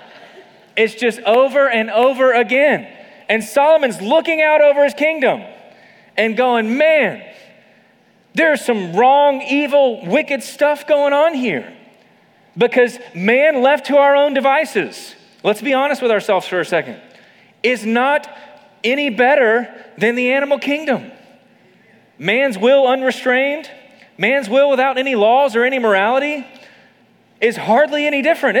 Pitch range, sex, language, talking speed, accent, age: 225-280 Hz, male, English, 130 wpm, American, 30-49